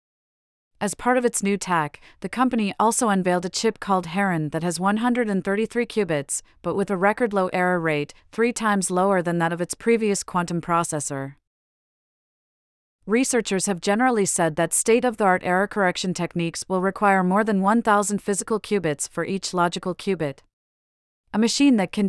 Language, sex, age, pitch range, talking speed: English, female, 30-49, 170-210 Hz, 160 wpm